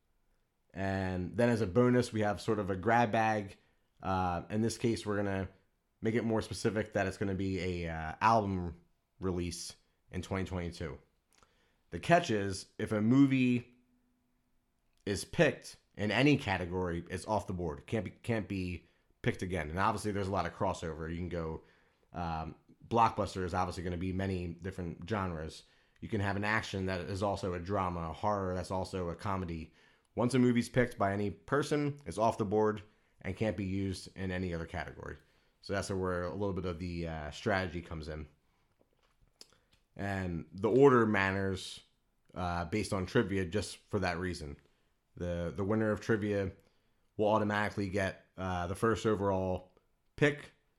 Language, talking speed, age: English, 170 wpm, 30-49